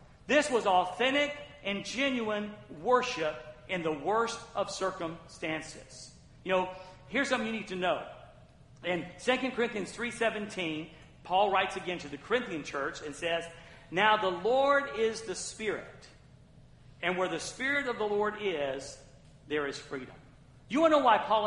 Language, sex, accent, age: English, male, American, 50-69